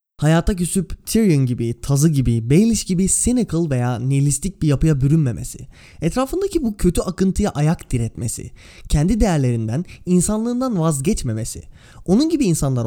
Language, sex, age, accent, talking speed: Turkish, male, 20-39, native, 125 wpm